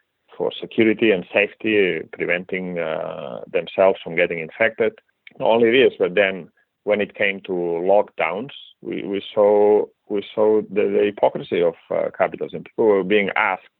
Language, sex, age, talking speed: English, male, 40-59, 150 wpm